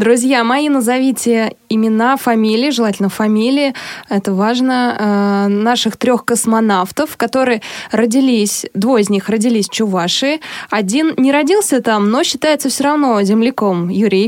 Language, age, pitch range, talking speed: Russian, 20-39, 205-260 Hz, 125 wpm